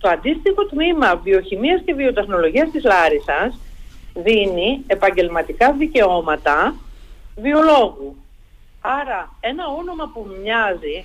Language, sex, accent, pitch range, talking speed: Greek, female, native, 195-310 Hz, 90 wpm